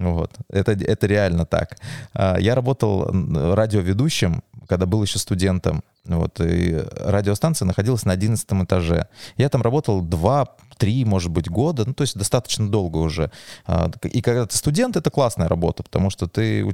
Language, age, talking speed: Russian, 20-39, 155 wpm